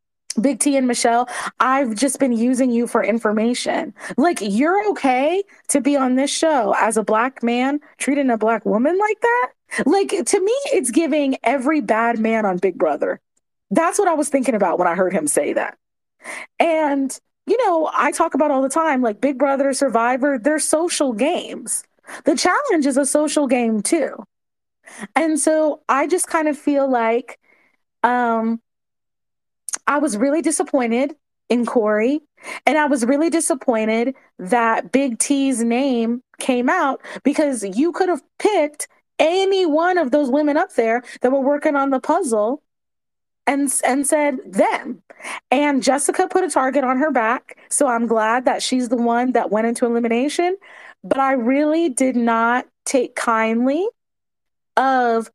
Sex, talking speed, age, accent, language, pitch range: female, 165 wpm, 30-49, American, English, 235-310 Hz